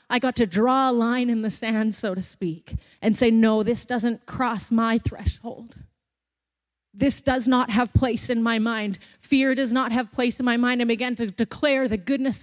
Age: 30-49